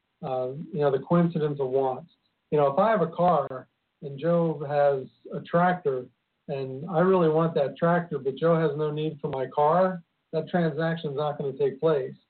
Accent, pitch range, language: American, 140-175 Hz, English